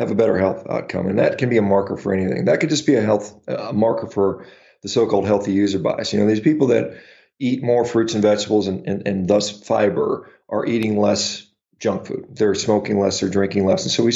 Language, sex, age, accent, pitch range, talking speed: English, male, 40-59, American, 95-110 Hz, 235 wpm